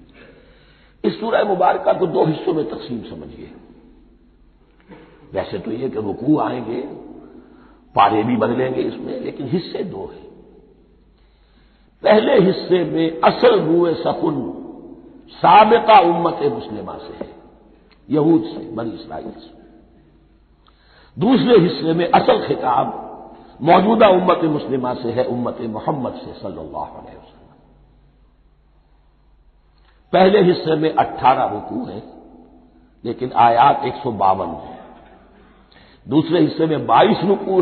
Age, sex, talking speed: 50-69, male, 105 wpm